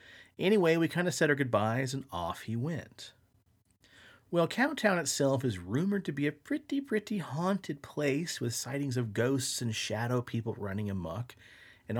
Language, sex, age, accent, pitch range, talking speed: English, male, 40-59, American, 105-140 Hz, 165 wpm